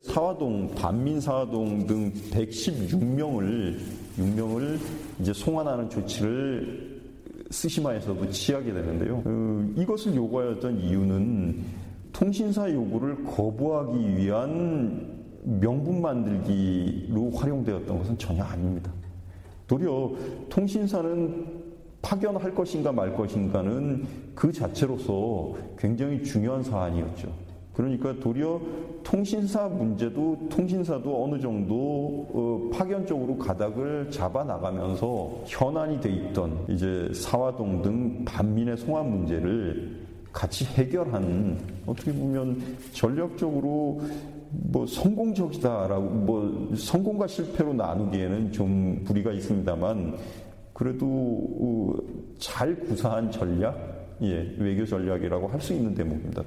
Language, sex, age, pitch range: Korean, male, 40-59, 95-145 Hz